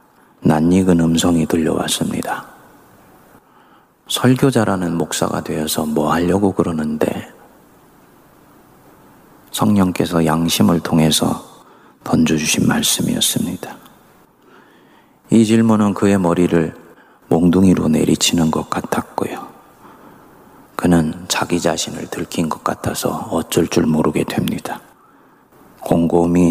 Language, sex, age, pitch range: Korean, male, 30-49, 80-95 Hz